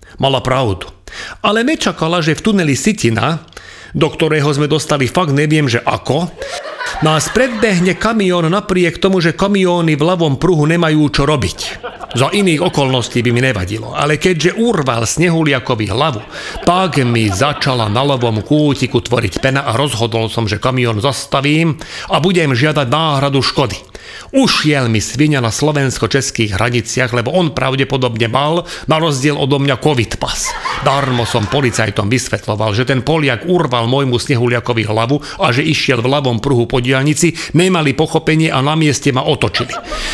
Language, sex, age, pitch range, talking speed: Slovak, male, 40-59, 125-160 Hz, 150 wpm